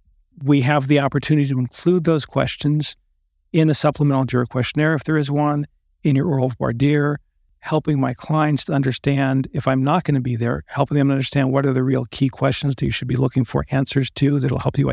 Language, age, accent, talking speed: English, 50-69, American, 215 wpm